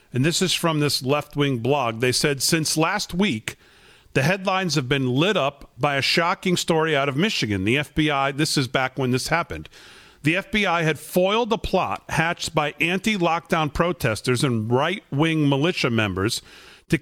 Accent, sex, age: American, male, 40-59